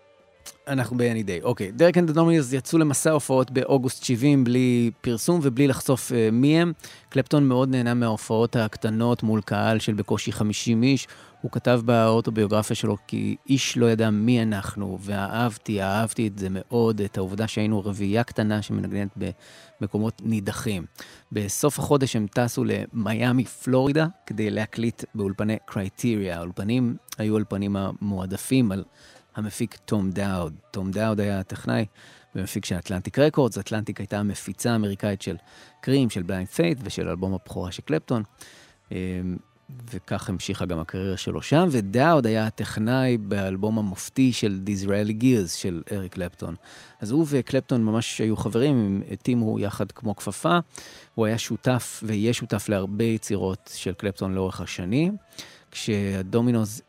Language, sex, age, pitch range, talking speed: Hebrew, male, 30-49, 100-125 Hz, 140 wpm